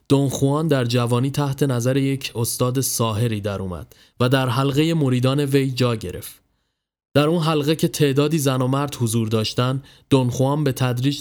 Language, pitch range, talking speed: Persian, 120-145 Hz, 160 wpm